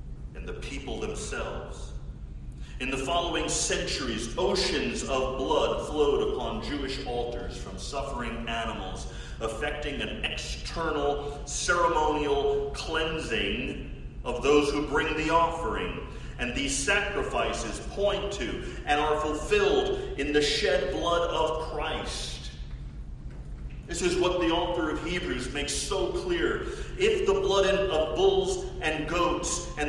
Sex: male